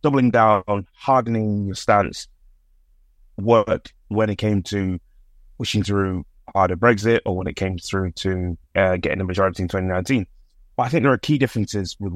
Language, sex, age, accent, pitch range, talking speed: English, male, 20-39, British, 95-125 Hz, 175 wpm